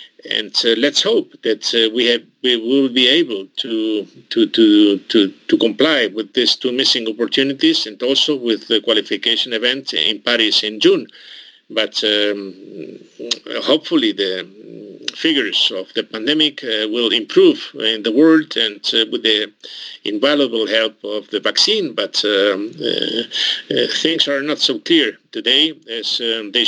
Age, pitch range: 50-69, 110-165 Hz